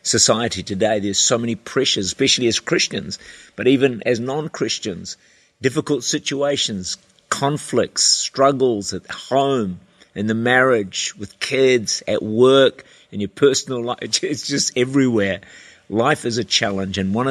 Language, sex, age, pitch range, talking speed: English, male, 50-69, 105-130 Hz, 135 wpm